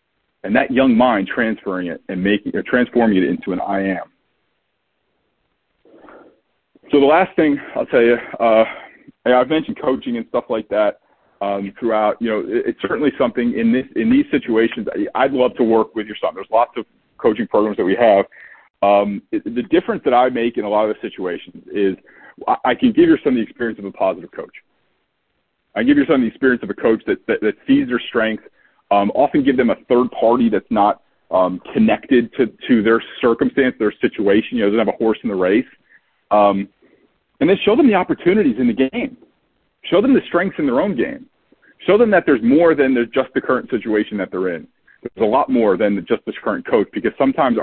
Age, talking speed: 40-59, 220 wpm